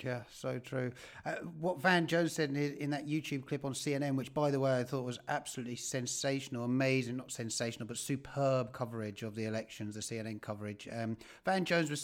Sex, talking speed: male, 200 wpm